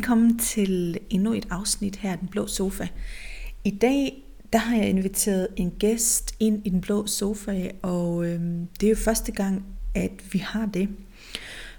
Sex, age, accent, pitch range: female, 30-49, native, 180-220 Hz